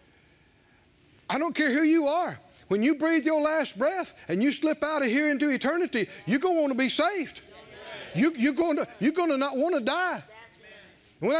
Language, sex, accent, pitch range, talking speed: English, male, American, 235-315 Hz, 185 wpm